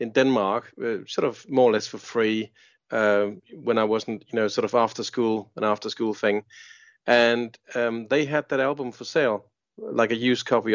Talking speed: 195 wpm